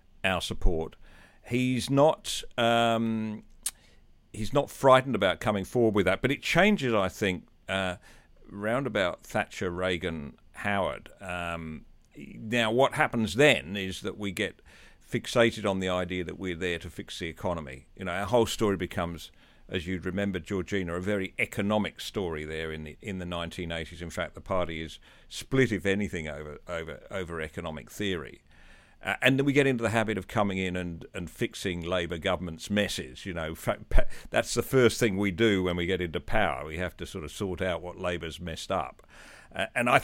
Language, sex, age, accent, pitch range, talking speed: English, male, 50-69, British, 85-110 Hz, 185 wpm